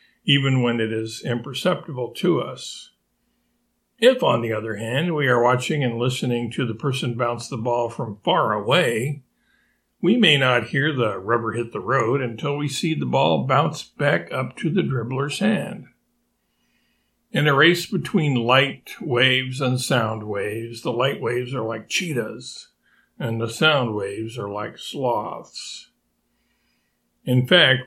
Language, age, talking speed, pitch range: English, 60-79, 155 wpm, 115-150 Hz